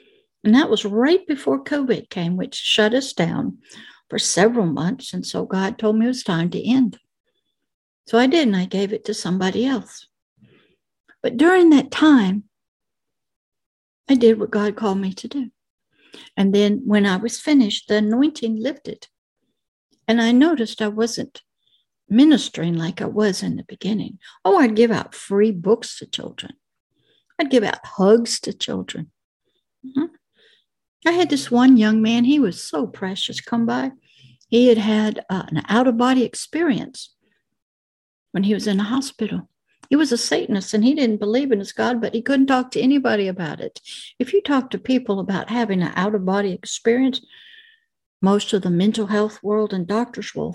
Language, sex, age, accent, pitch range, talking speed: English, female, 60-79, American, 205-260 Hz, 170 wpm